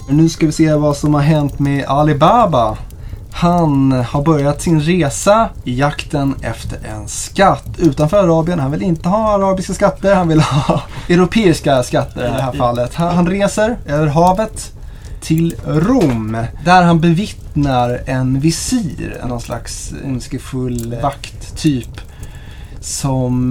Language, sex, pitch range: Swedish, male, 125-165 Hz